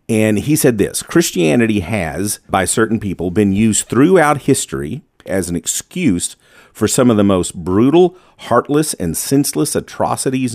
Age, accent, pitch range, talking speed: 50-69, American, 90-120 Hz, 150 wpm